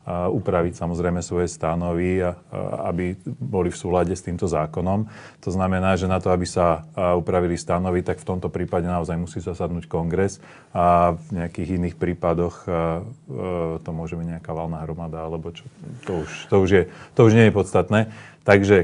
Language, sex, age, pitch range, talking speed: Slovak, male, 30-49, 90-105 Hz, 165 wpm